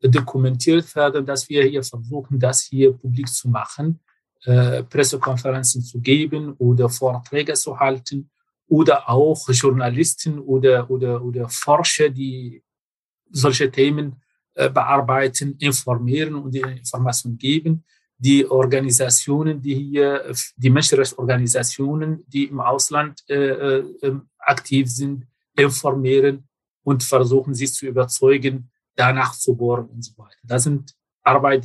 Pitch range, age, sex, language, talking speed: 125-145 Hz, 40-59, male, German, 120 wpm